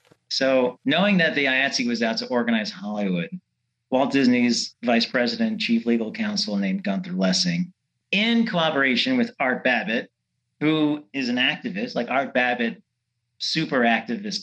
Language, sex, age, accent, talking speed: English, male, 40-59, American, 140 wpm